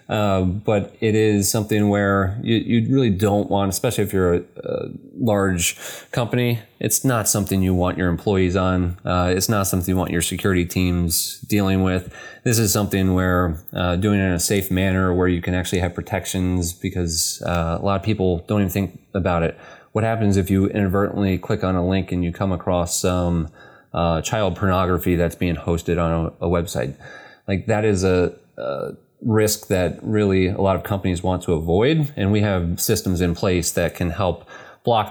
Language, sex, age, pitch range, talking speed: English, male, 30-49, 90-105 Hz, 195 wpm